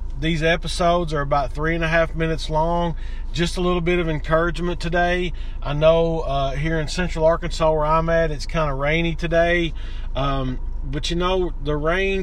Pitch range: 140-175 Hz